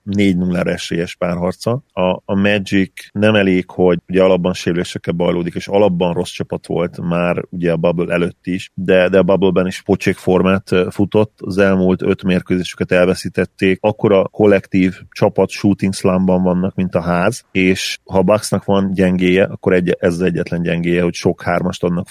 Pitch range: 90-100 Hz